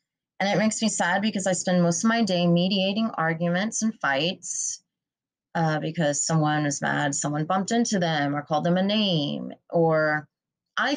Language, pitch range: English, 155-190 Hz